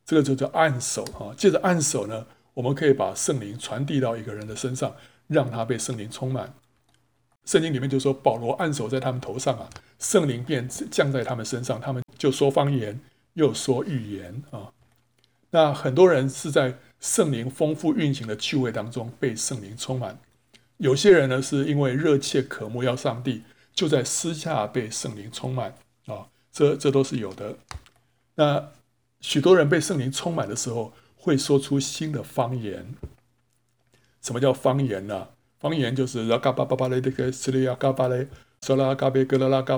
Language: Chinese